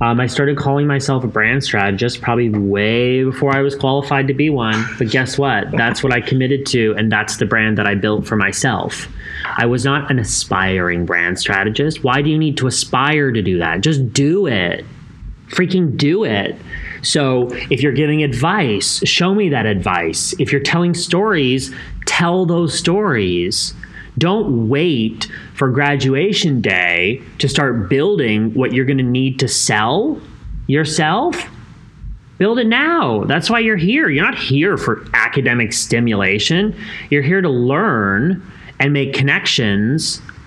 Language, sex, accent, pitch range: English, male, American, 110-145 Hz